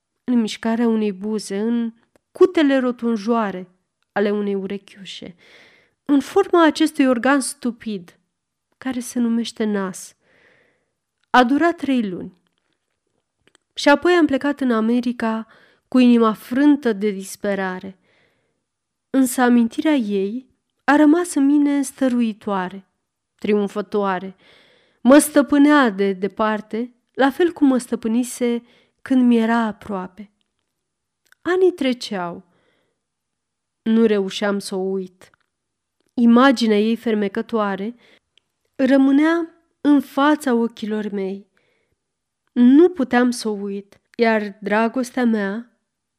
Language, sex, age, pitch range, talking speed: Romanian, female, 30-49, 205-275 Hz, 105 wpm